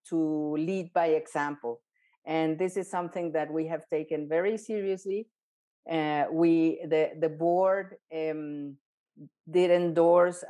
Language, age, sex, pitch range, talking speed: English, 50-69, female, 155-185 Hz, 125 wpm